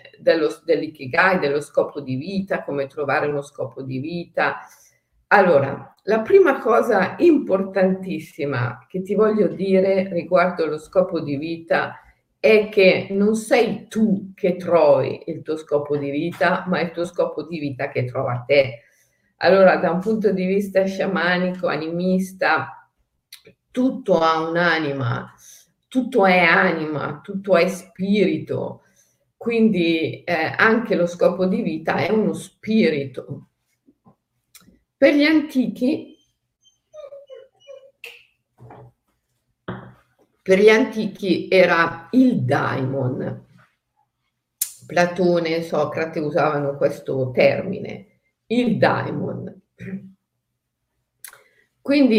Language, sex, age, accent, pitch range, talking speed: Italian, female, 50-69, native, 155-210 Hz, 105 wpm